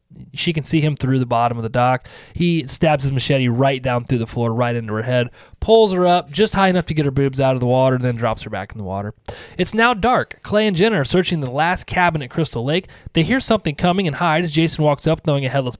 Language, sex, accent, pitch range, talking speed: English, male, American, 130-170 Hz, 270 wpm